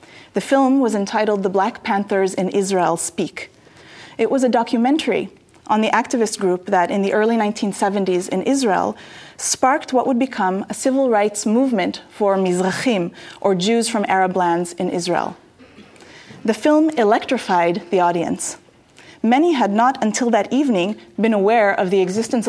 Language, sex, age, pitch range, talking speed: English, female, 30-49, 190-250 Hz, 155 wpm